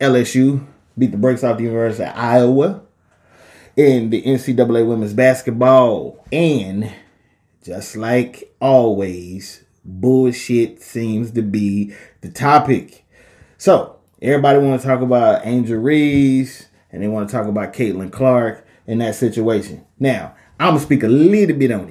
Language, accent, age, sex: English, American, 20-39, male